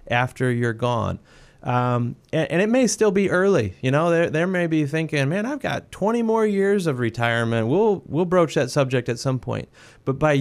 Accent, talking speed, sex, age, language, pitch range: American, 200 wpm, male, 30-49, English, 125-150 Hz